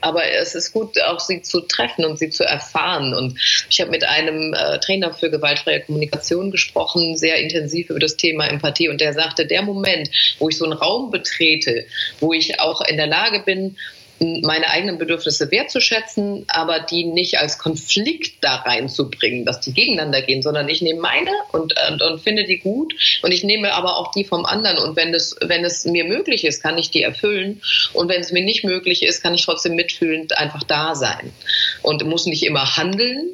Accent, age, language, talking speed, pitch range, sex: German, 30-49, German, 195 wpm, 150-180 Hz, female